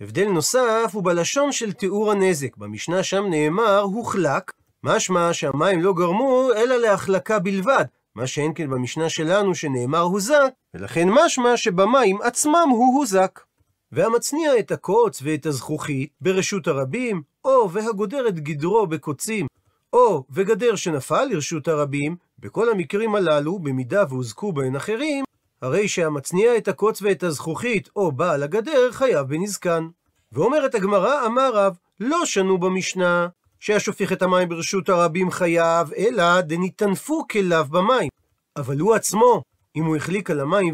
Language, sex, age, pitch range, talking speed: Hebrew, male, 40-59, 160-225 Hz, 135 wpm